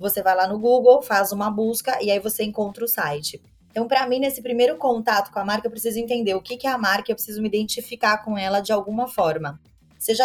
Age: 20-39